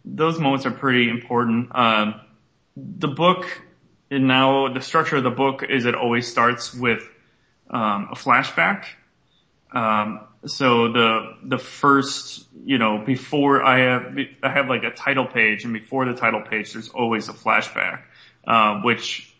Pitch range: 115-135 Hz